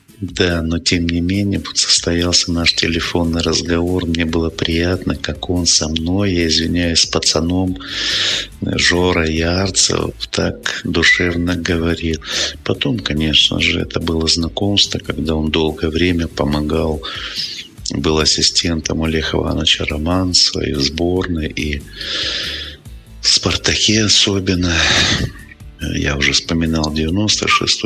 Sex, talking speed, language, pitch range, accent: male, 115 wpm, Russian, 80-90 Hz, native